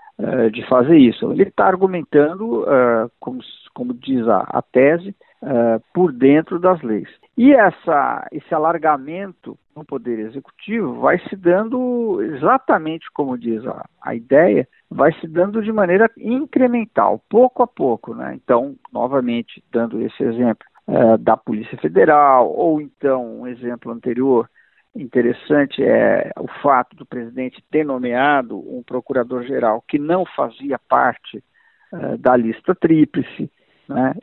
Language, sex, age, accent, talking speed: Portuguese, male, 50-69, Brazilian, 125 wpm